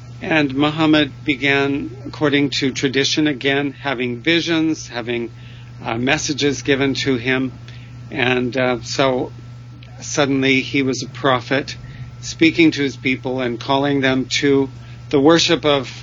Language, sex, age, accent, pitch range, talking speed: English, male, 50-69, American, 120-150 Hz, 125 wpm